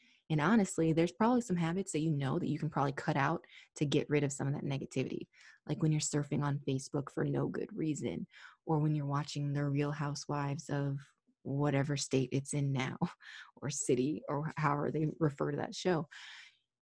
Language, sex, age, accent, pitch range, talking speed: English, female, 20-39, American, 140-155 Hz, 195 wpm